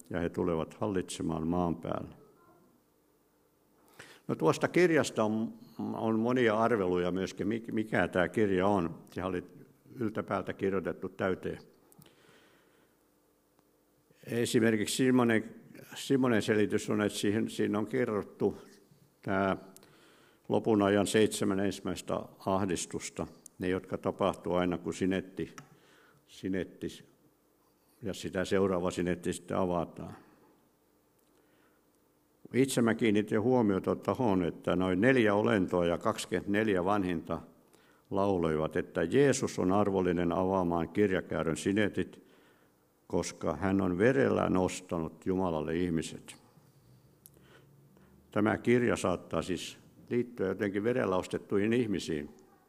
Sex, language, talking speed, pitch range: male, Finnish, 95 wpm, 90-110 Hz